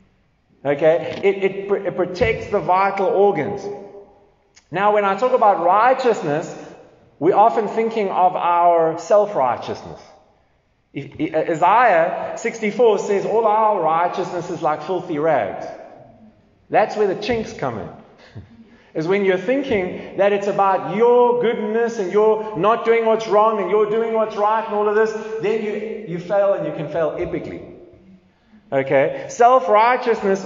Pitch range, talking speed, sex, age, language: 180-225 Hz, 145 wpm, male, 30-49, English